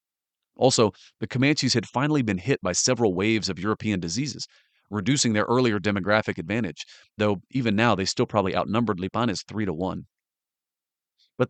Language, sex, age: English, male, 40-59